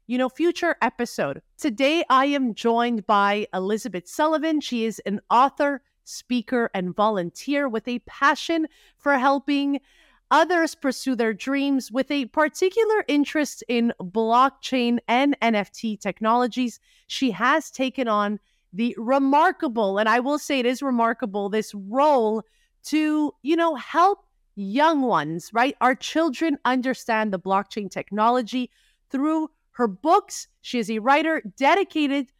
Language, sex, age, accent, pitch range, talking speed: English, female, 30-49, American, 225-295 Hz, 135 wpm